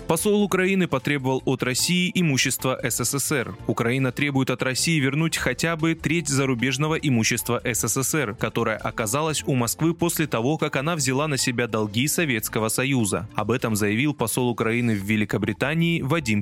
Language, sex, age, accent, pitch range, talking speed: Russian, male, 20-39, native, 120-160 Hz, 145 wpm